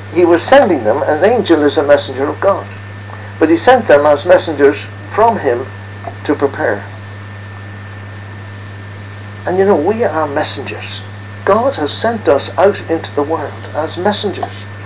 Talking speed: 150 wpm